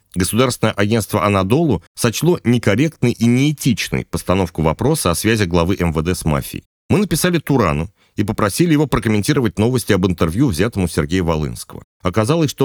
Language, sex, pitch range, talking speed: Russian, male, 85-120 Hz, 145 wpm